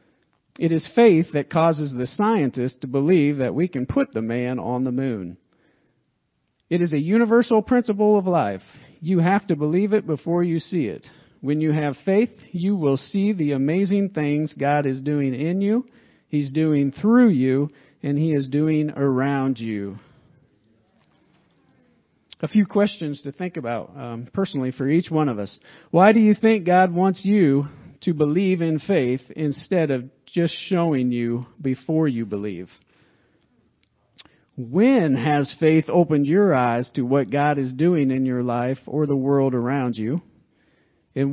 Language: English